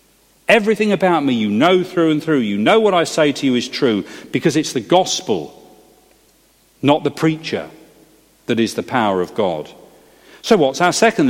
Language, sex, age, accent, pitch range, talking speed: English, male, 40-59, British, 130-190 Hz, 180 wpm